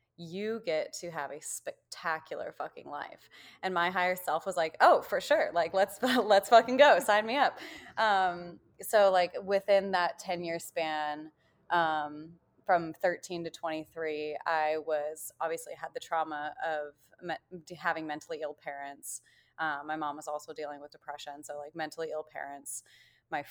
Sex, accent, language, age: female, American, English, 20-39